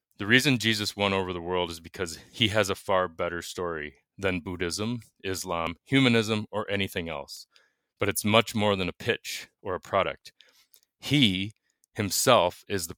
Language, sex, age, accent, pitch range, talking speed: English, male, 30-49, American, 90-105 Hz, 165 wpm